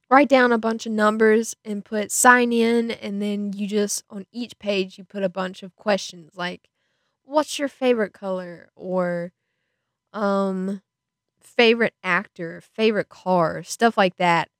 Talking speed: 150 wpm